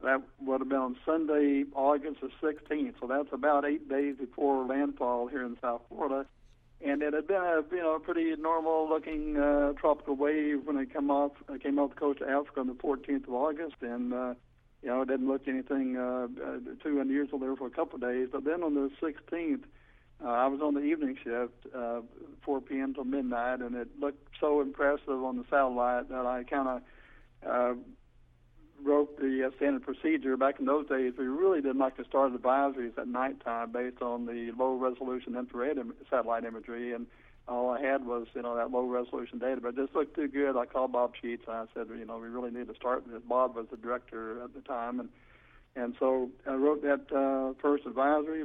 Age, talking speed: 60-79, 205 wpm